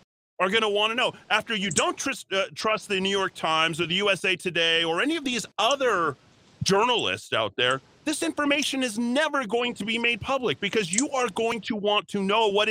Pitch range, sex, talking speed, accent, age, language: 150-230 Hz, male, 215 wpm, American, 40-59, English